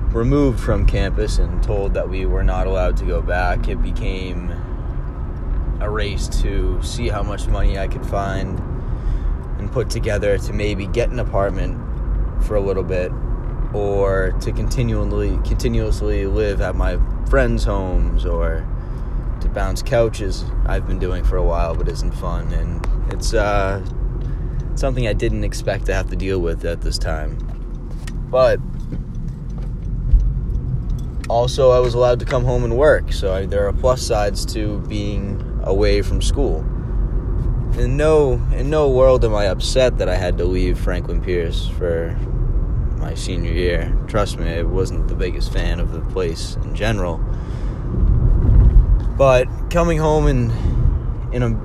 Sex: male